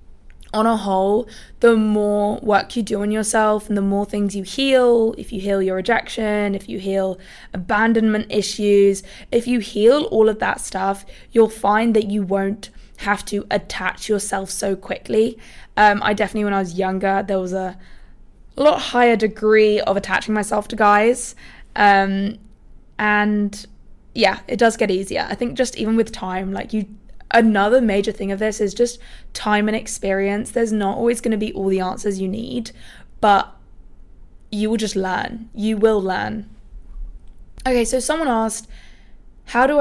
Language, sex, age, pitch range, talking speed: English, female, 20-39, 195-225 Hz, 170 wpm